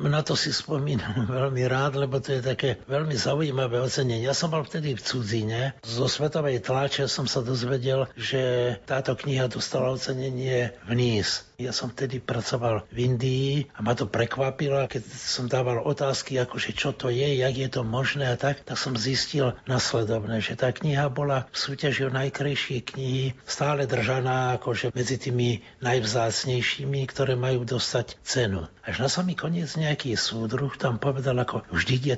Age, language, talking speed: 60-79, Slovak, 165 wpm